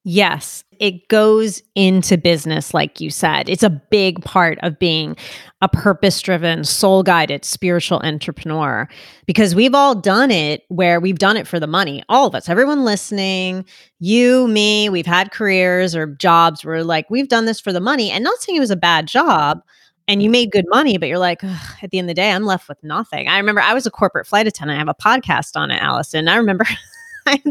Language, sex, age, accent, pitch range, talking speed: English, female, 30-49, American, 170-225 Hz, 210 wpm